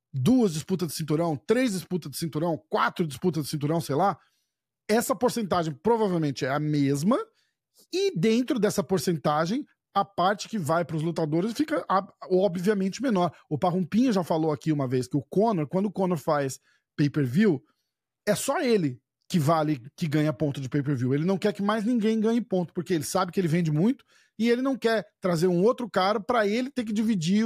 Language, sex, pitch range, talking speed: Portuguese, male, 155-210 Hz, 200 wpm